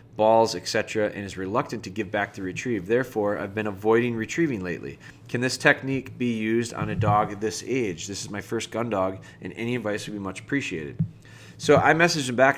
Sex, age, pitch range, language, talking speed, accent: male, 30-49, 105-125 Hz, English, 210 wpm, American